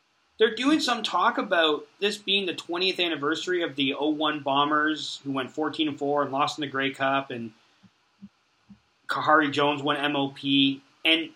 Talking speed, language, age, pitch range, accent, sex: 160 wpm, English, 30-49, 140-220 Hz, American, male